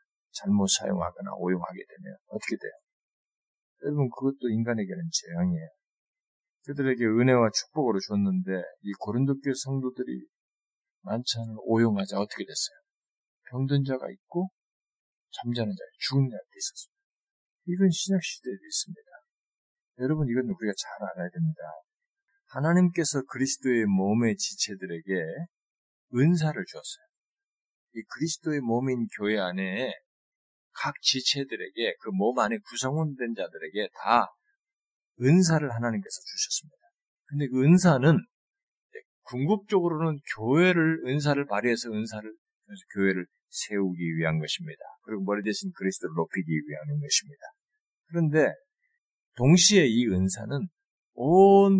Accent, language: native, Korean